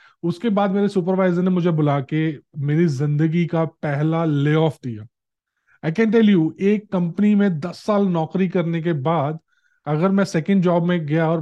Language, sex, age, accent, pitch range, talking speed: English, male, 20-39, Indian, 150-195 Hz, 180 wpm